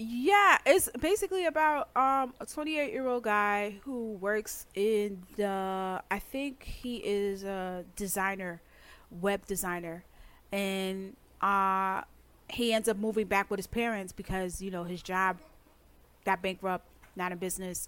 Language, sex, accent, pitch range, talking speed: English, female, American, 185-225 Hz, 135 wpm